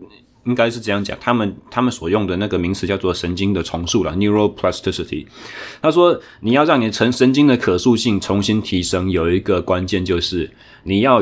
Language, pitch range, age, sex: Chinese, 95-120 Hz, 20-39, male